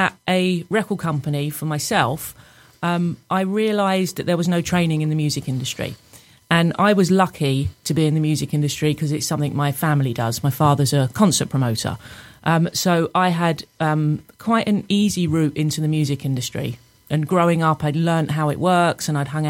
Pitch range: 145-175 Hz